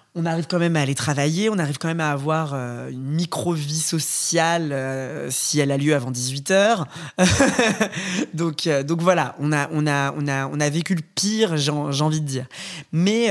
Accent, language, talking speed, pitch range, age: French, French, 175 wpm, 140-170 Hz, 20-39